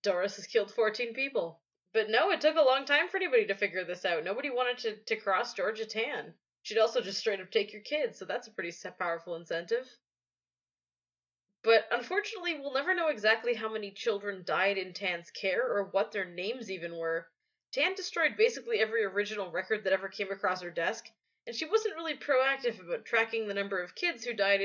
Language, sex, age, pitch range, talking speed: English, female, 20-39, 195-260 Hz, 200 wpm